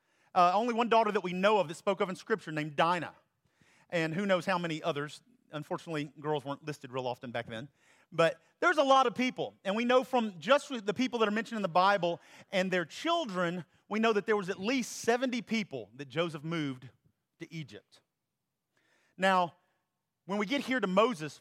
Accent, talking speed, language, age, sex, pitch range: American, 200 wpm, English, 40-59, male, 160-235 Hz